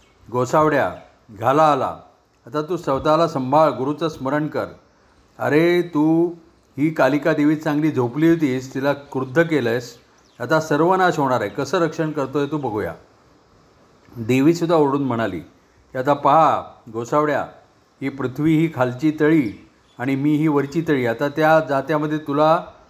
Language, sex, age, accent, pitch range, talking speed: Marathi, male, 40-59, native, 130-160 Hz, 135 wpm